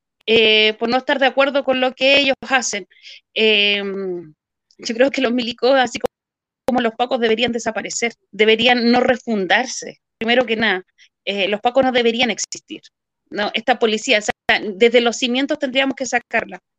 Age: 30-49